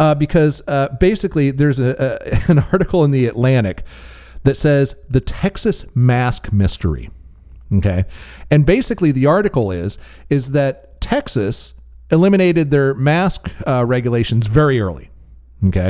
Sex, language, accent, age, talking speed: male, English, American, 40-59, 130 wpm